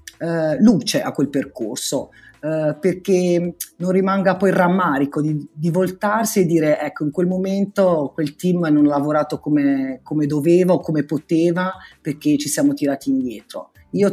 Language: Italian